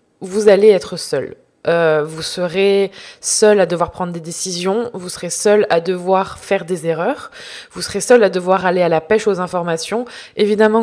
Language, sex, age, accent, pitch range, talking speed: French, female, 20-39, French, 180-210 Hz, 185 wpm